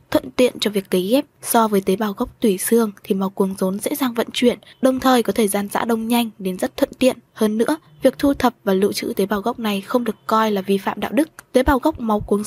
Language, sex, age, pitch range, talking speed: Vietnamese, female, 10-29, 205-255 Hz, 280 wpm